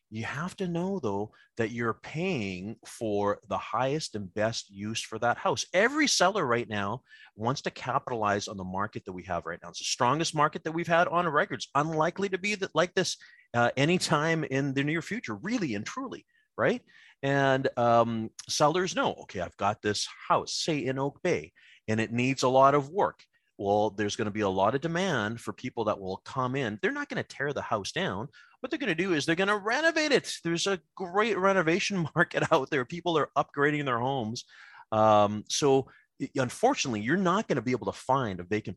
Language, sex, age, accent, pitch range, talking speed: English, male, 30-49, American, 105-165 Hz, 210 wpm